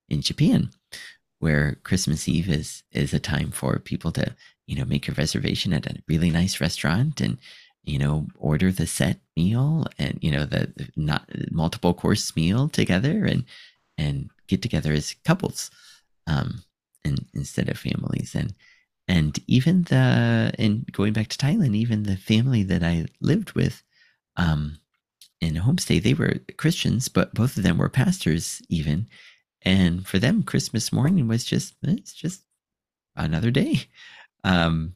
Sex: male